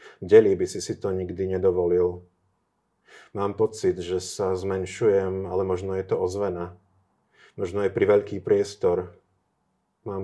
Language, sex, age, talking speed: Slovak, male, 30-49, 135 wpm